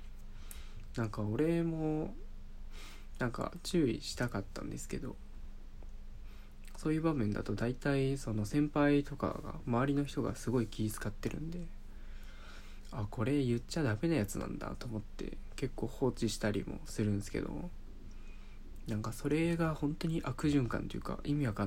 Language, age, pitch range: Japanese, 20-39, 100-140 Hz